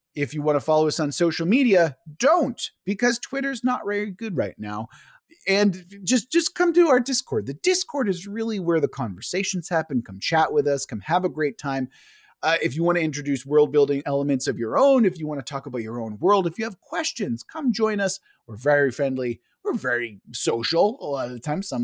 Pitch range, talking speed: 135-210 Hz, 220 wpm